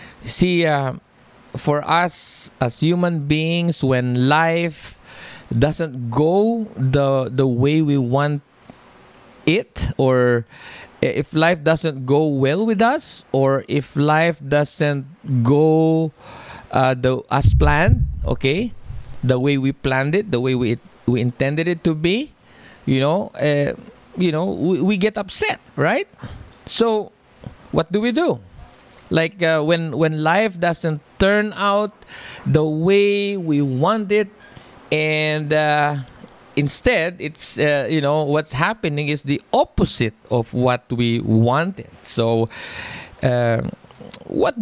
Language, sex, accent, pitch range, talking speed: English, male, Filipino, 130-170 Hz, 130 wpm